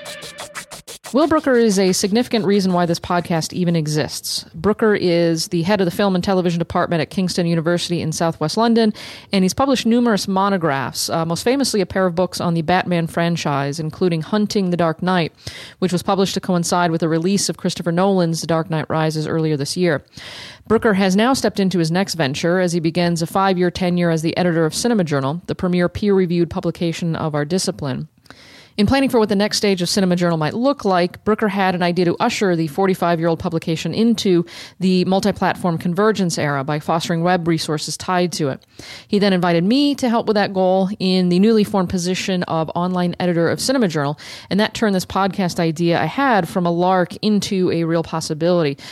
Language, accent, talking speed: English, American, 200 wpm